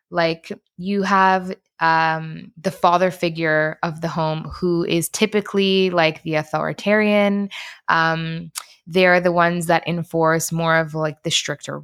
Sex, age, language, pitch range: female, 20-39, English, 165-195 Hz